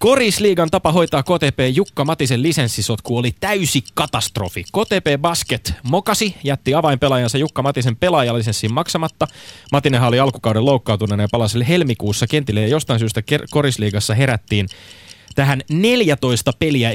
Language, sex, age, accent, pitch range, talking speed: Finnish, male, 30-49, native, 110-155 Hz, 130 wpm